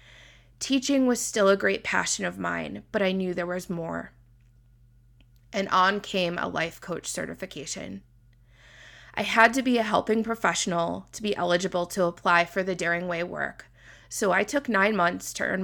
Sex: female